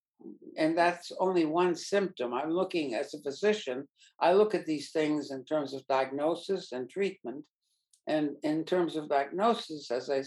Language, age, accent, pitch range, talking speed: English, 60-79, American, 140-170 Hz, 165 wpm